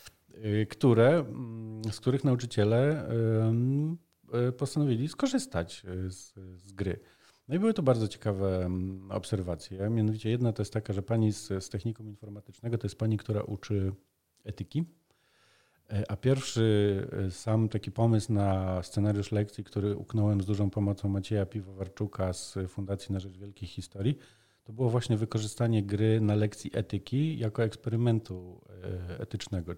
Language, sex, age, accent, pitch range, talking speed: Polish, male, 40-59, native, 95-115 Hz, 130 wpm